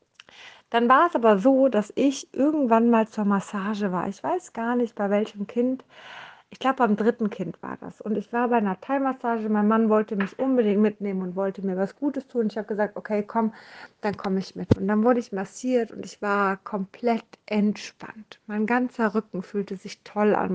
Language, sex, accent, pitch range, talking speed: German, female, German, 195-245 Hz, 205 wpm